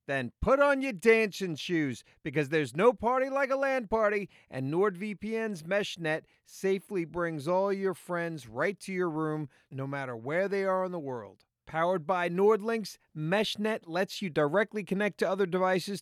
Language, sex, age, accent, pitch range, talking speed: English, male, 30-49, American, 155-205 Hz, 170 wpm